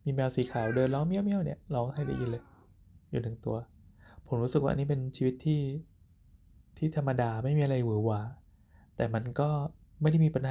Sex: male